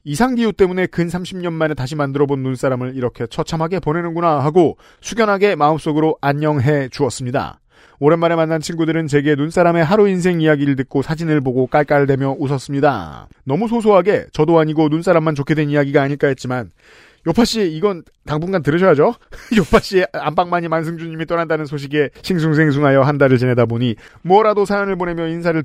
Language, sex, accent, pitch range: Korean, male, native, 140-170 Hz